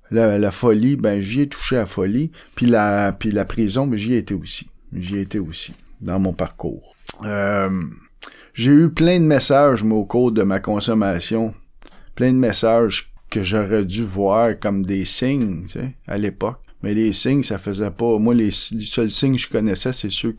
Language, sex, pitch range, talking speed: French, male, 100-120 Hz, 200 wpm